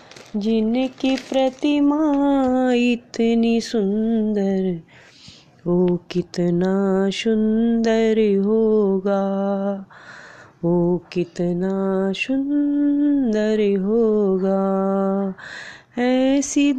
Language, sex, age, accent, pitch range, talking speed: Hindi, female, 20-39, native, 220-290 Hz, 45 wpm